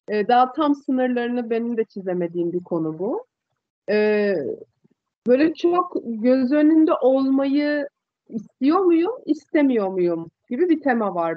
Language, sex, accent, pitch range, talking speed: Turkish, female, native, 210-300 Hz, 115 wpm